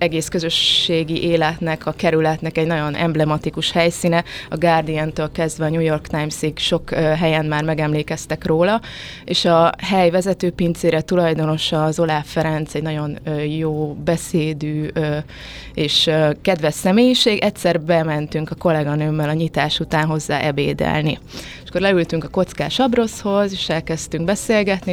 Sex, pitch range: female, 155-180 Hz